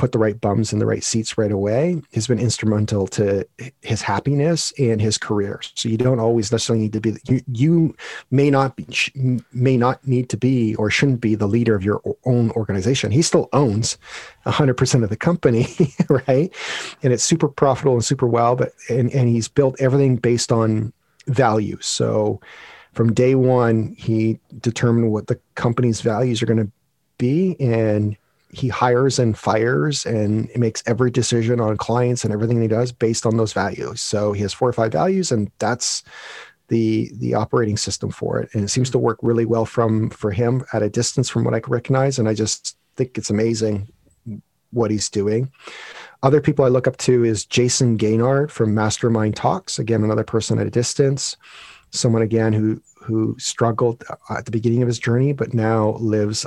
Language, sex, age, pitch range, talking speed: English, male, 40-59, 110-130 Hz, 190 wpm